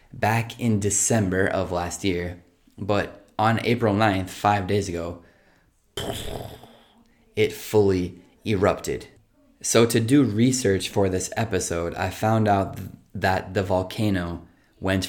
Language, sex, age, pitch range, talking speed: Italian, male, 20-39, 90-110 Hz, 125 wpm